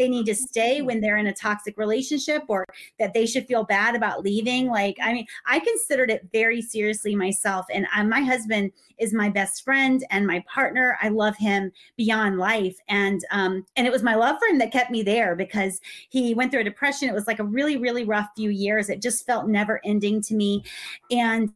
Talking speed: 215 wpm